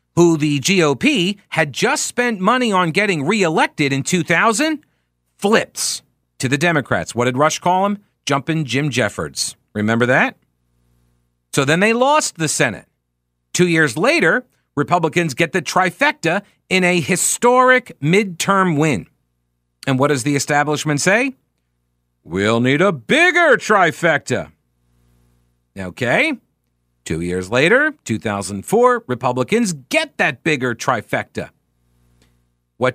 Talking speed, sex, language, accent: 120 wpm, male, English, American